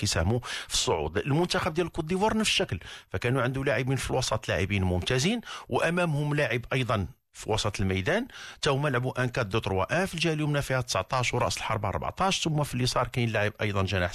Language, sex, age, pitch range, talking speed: Arabic, male, 50-69, 115-150 Hz, 165 wpm